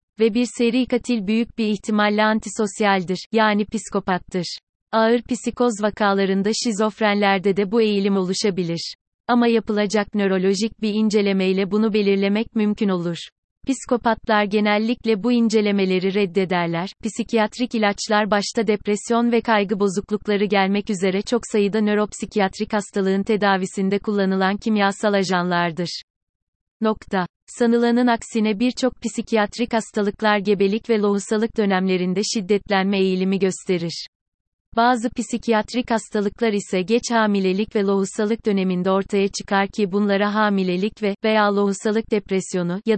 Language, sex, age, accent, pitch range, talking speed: Turkish, female, 30-49, native, 195-220 Hz, 115 wpm